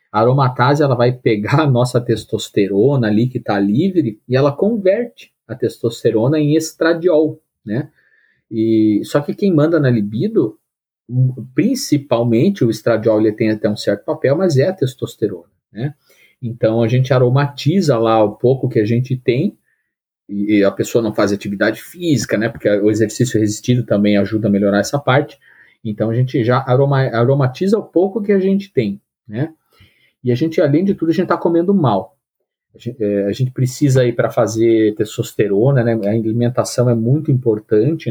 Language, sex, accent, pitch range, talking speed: Portuguese, male, Brazilian, 110-140 Hz, 170 wpm